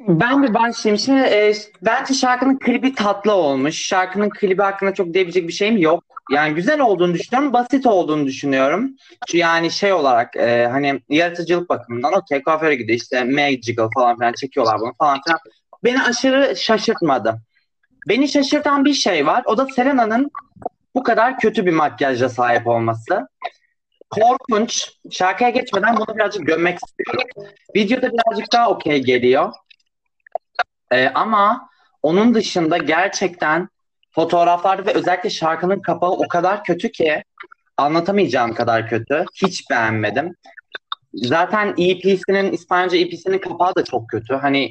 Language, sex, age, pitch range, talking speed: Turkish, male, 30-49, 160-230 Hz, 135 wpm